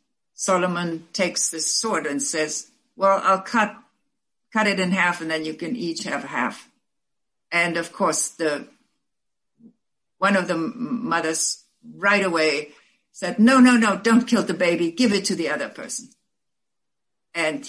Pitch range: 160-210 Hz